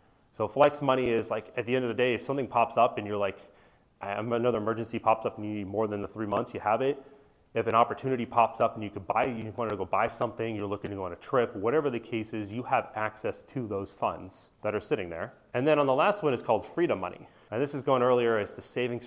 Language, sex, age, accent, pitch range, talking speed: English, male, 30-49, American, 105-125 Hz, 280 wpm